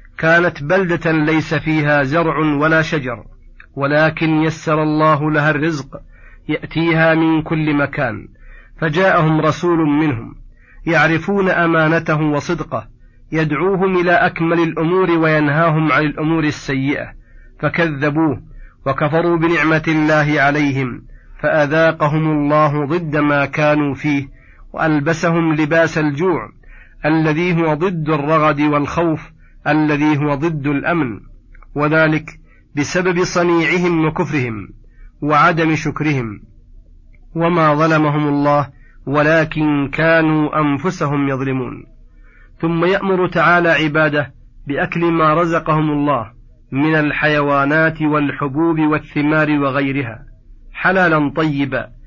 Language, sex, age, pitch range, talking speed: Arabic, male, 40-59, 145-165 Hz, 95 wpm